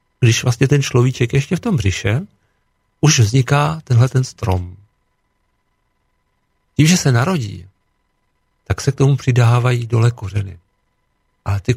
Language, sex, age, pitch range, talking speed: Slovak, male, 50-69, 100-145 Hz, 135 wpm